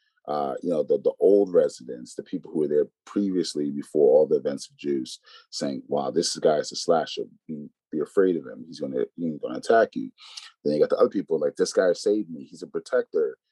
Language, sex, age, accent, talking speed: English, male, 30-49, American, 220 wpm